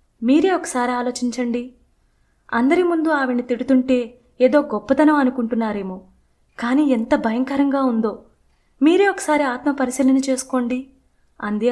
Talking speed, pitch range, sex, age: 95 wpm, 220-260 Hz, female, 20-39